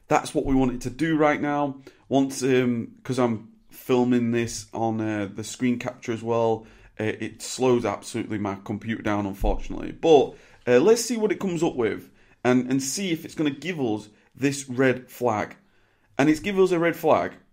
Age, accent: 30-49, British